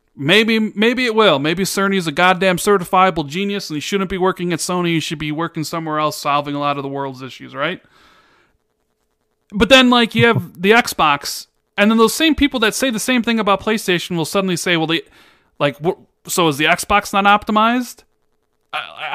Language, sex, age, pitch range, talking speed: English, male, 30-49, 150-220 Hz, 200 wpm